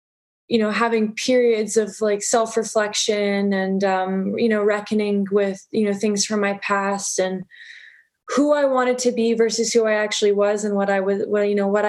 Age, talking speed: 20-39, 190 wpm